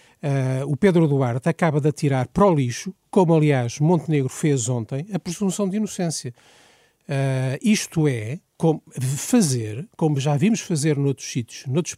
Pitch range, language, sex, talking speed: 145-200 Hz, Portuguese, male, 140 wpm